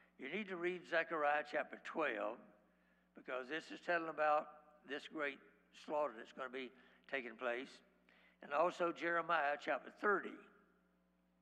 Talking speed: 135 wpm